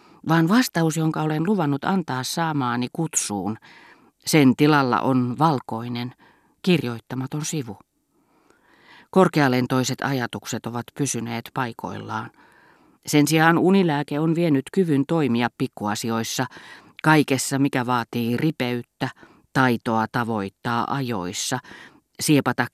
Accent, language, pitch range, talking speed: native, Finnish, 120-150 Hz, 90 wpm